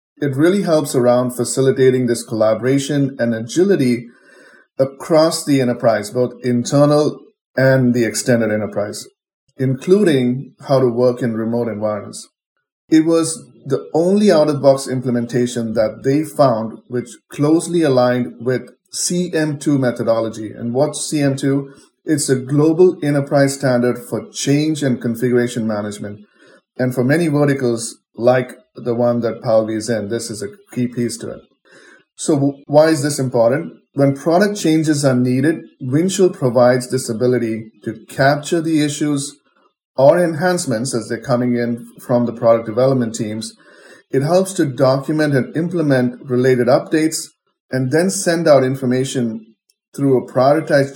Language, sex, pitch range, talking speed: English, male, 120-150 Hz, 140 wpm